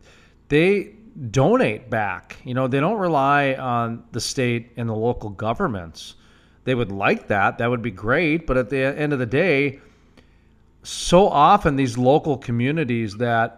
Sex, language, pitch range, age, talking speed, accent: male, English, 110-140 Hz, 40-59, 160 wpm, American